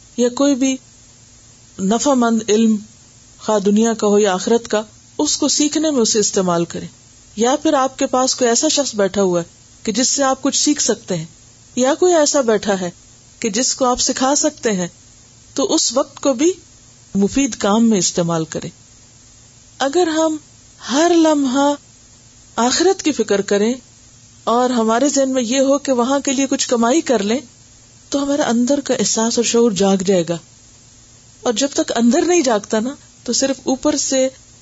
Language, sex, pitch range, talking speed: Urdu, female, 175-255 Hz, 180 wpm